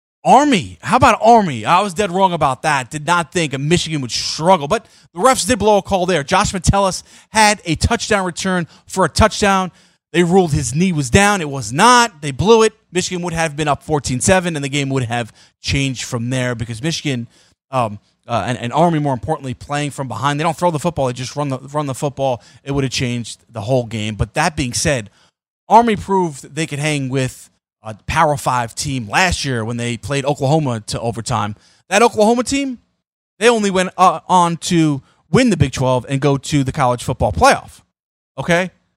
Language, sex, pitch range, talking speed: English, male, 125-180 Hz, 205 wpm